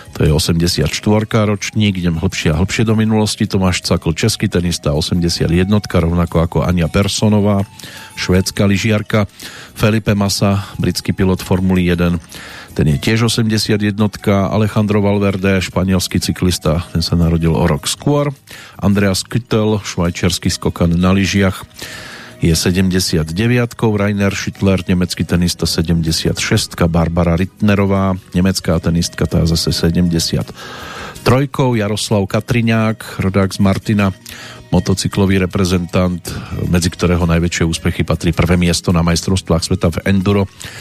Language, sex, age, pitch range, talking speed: Slovak, male, 40-59, 85-110 Hz, 115 wpm